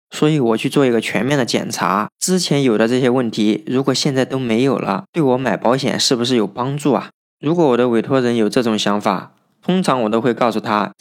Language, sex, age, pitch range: Chinese, male, 20-39, 110-140 Hz